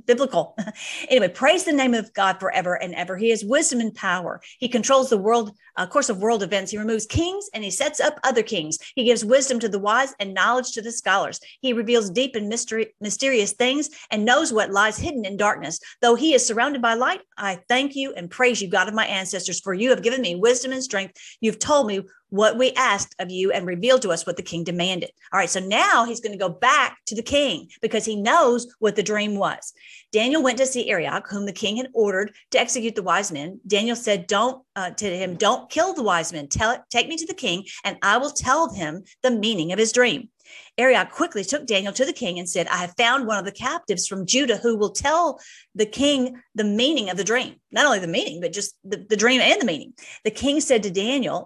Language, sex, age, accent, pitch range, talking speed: English, female, 40-59, American, 200-255 Hz, 235 wpm